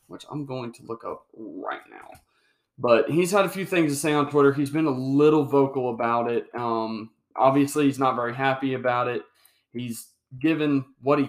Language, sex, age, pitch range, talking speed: English, male, 20-39, 115-145 Hz, 195 wpm